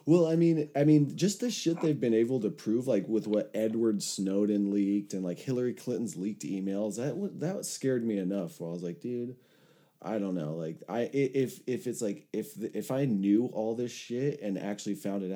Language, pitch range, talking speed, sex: English, 90-125 Hz, 215 wpm, male